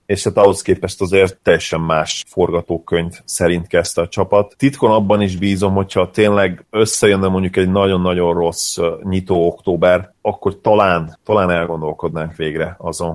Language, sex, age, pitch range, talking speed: Hungarian, male, 30-49, 85-95 Hz, 145 wpm